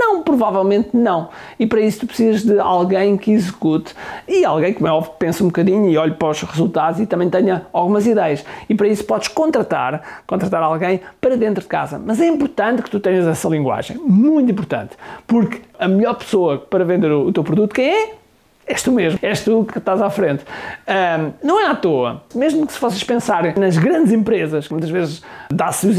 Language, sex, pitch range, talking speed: Portuguese, male, 180-235 Hz, 200 wpm